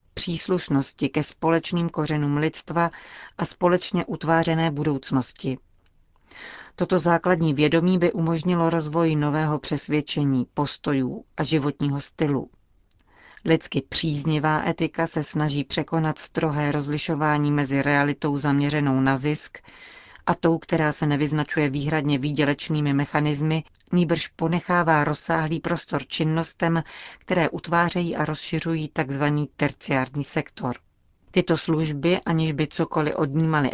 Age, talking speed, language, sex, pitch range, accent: 40-59, 105 wpm, Czech, female, 145-165 Hz, native